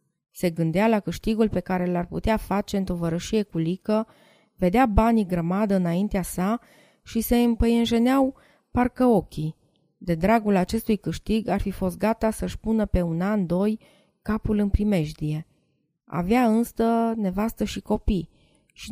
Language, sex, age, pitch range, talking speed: Romanian, female, 20-39, 170-220 Hz, 145 wpm